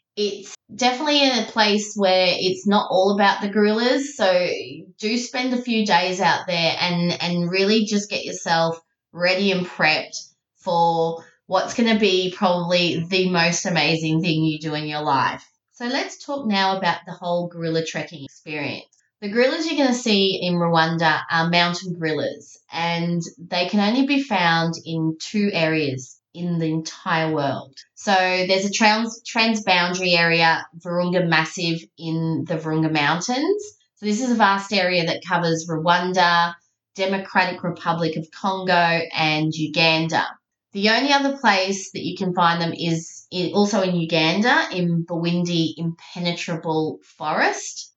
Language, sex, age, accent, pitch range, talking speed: English, female, 20-39, Australian, 165-210 Hz, 155 wpm